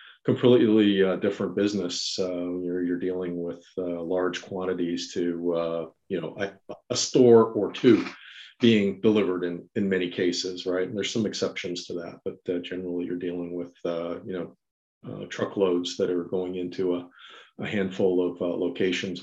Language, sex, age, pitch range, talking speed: English, male, 40-59, 90-105 Hz, 170 wpm